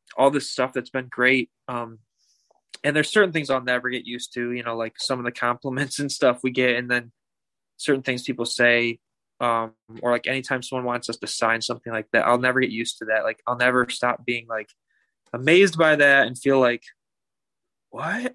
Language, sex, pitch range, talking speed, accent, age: English, male, 125-145 Hz, 210 wpm, American, 20-39